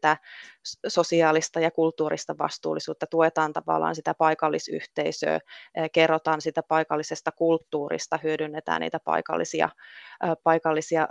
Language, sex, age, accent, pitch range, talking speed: Finnish, female, 20-39, native, 155-165 Hz, 85 wpm